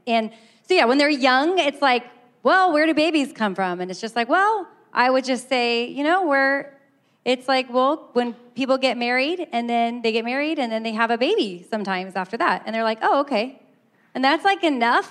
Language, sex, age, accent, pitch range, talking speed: English, female, 30-49, American, 225-285 Hz, 225 wpm